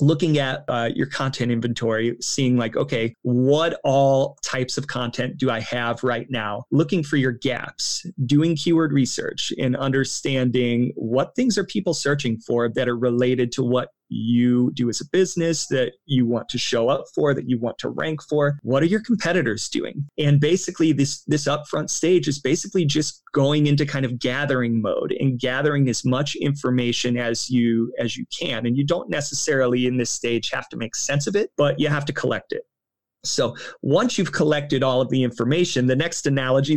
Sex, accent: male, American